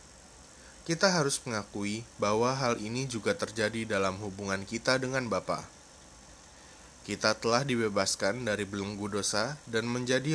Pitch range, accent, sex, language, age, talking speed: 95-125 Hz, native, male, Indonesian, 20-39, 120 wpm